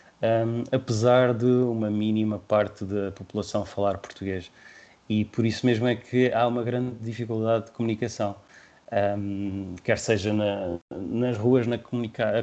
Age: 20-39